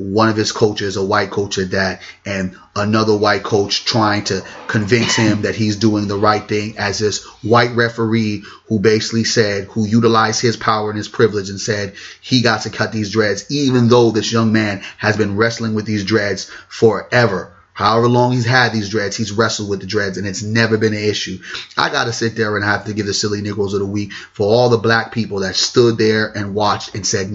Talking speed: 220 wpm